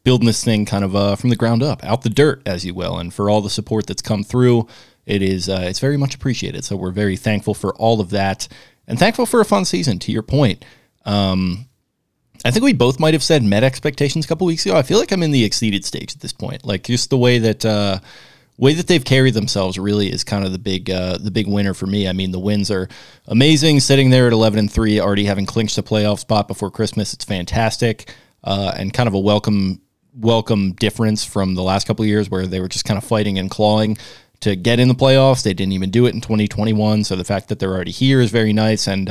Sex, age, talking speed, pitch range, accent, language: male, 20-39, 250 wpm, 100-120 Hz, American, English